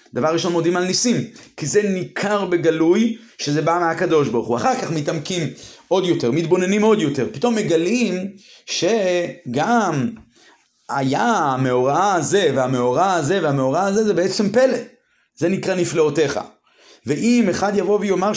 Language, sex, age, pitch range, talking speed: Hebrew, male, 30-49, 155-210 Hz, 135 wpm